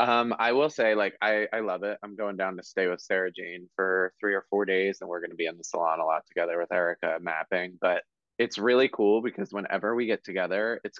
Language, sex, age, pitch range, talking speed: English, male, 20-39, 95-110 Hz, 250 wpm